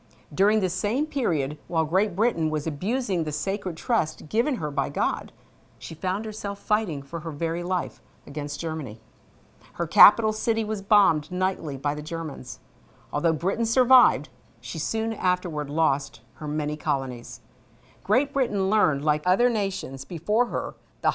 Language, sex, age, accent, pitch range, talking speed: English, female, 50-69, American, 145-205 Hz, 155 wpm